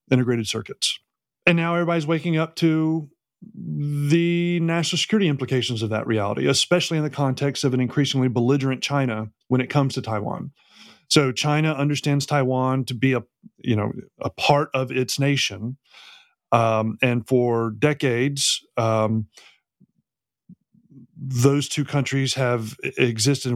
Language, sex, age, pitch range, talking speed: English, male, 30-49, 115-140 Hz, 140 wpm